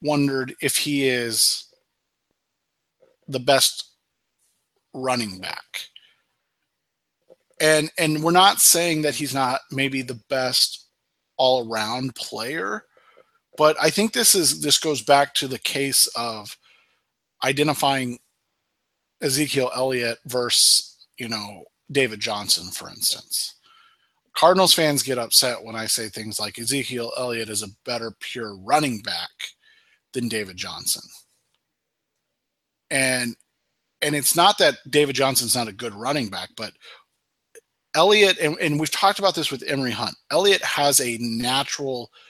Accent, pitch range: American, 115-150 Hz